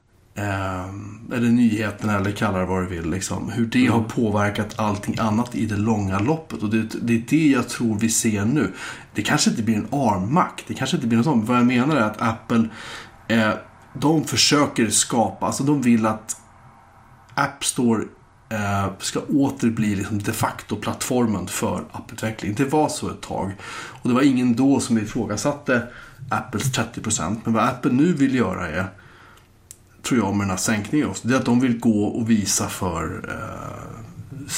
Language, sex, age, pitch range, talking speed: Swedish, male, 30-49, 100-120 Hz, 180 wpm